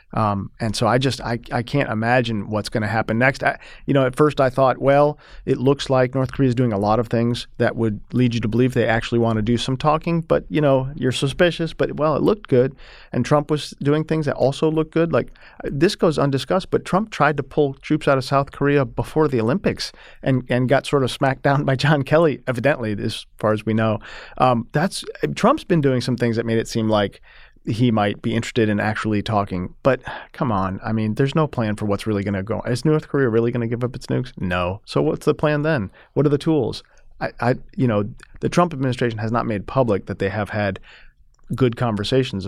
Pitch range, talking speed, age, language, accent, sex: 110-140 Hz, 235 wpm, 40-59, English, American, male